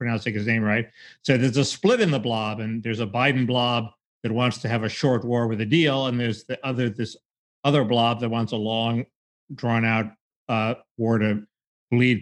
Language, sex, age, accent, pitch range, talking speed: English, male, 50-69, American, 120-160 Hz, 205 wpm